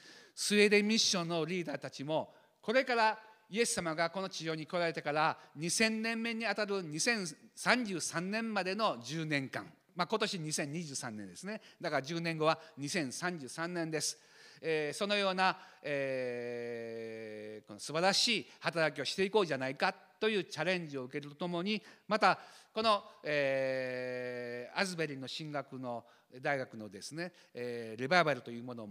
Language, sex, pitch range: Japanese, male, 135-195 Hz